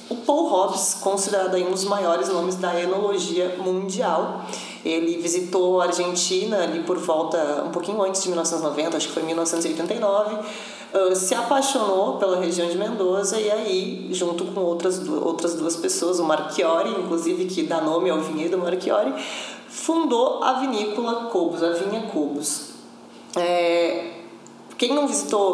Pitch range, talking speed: 175-215 Hz, 140 wpm